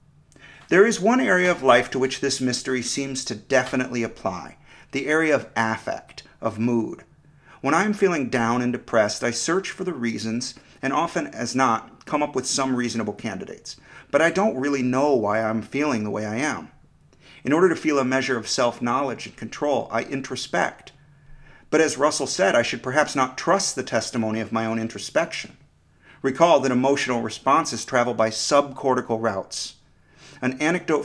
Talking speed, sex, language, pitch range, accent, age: 180 wpm, male, English, 115-145 Hz, American, 50-69